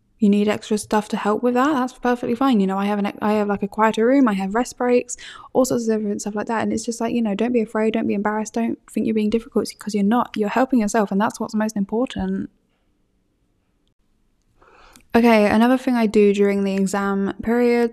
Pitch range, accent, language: 200-230 Hz, British, English